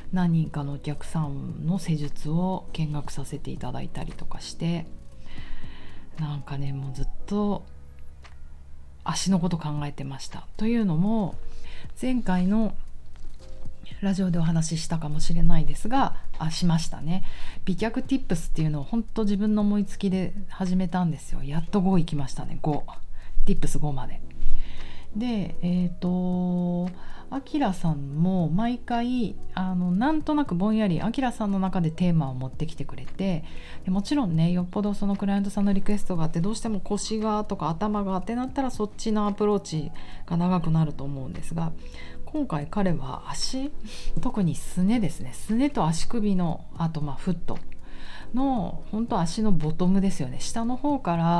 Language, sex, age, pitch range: Japanese, female, 40-59, 150-205 Hz